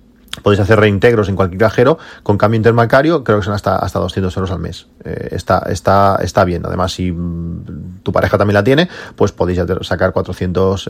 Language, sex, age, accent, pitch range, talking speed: Spanish, male, 30-49, Spanish, 95-115 Hz, 195 wpm